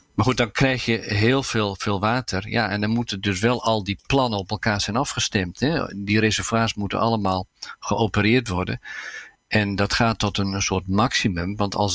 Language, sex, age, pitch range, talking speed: Dutch, male, 50-69, 95-115 Hz, 190 wpm